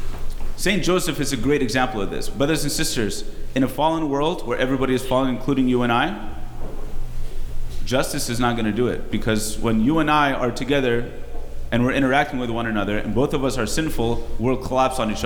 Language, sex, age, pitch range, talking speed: English, male, 30-49, 105-135 Hz, 205 wpm